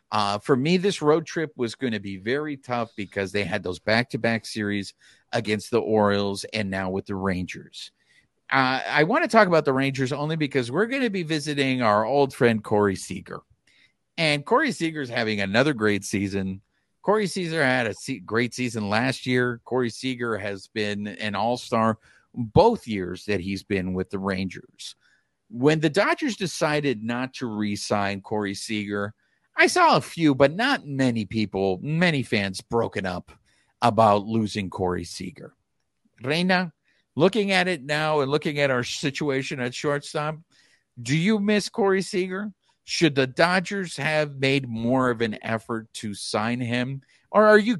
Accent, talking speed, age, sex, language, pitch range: American, 165 wpm, 50-69, male, English, 105-150 Hz